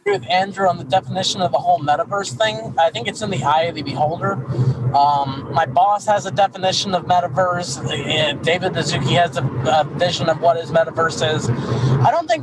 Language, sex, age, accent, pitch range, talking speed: English, male, 20-39, American, 140-185 Hz, 200 wpm